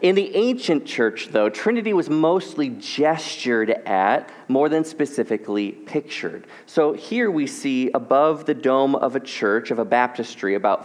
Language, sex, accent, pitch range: English, male, American, 115-150 Hz